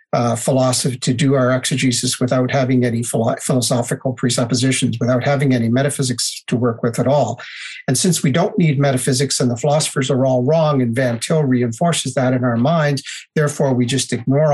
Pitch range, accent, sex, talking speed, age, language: 125-150 Hz, American, male, 180 wpm, 50-69, English